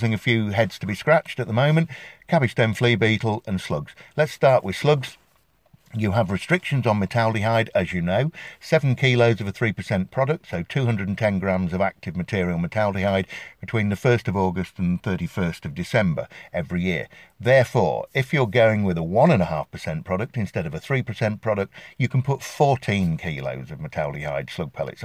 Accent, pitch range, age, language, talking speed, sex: British, 95-135 Hz, 50-69, English, 175 wpm, male